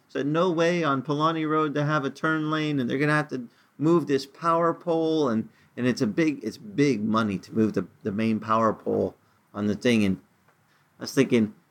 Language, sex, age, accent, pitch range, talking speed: English, male, 40-59, American, 135-195 Hz, 220 wpm